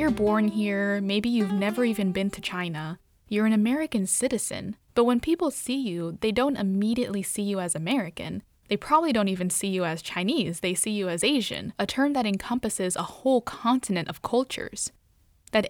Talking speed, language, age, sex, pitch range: 185 wpm, English, 20-39, female, 195-240 Hz